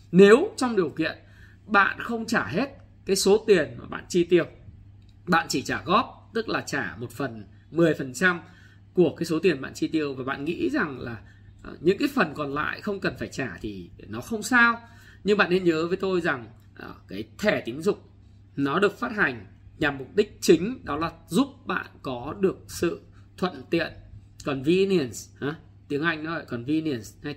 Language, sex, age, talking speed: Vietnamese, male, 20-39, 190 wpm